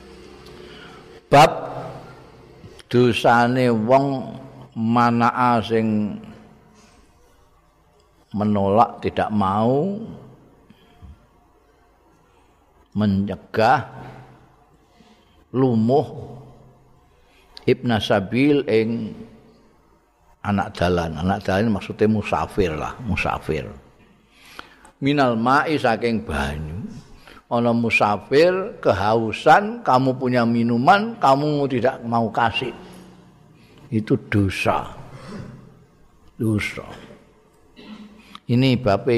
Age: 50-69